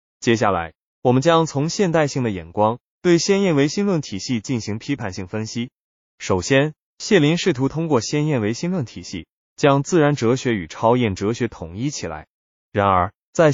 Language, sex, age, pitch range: Chinese, male, 20-39, 100-150 Hz